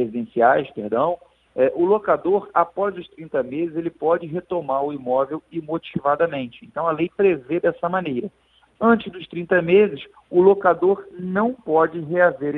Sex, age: male, 50-69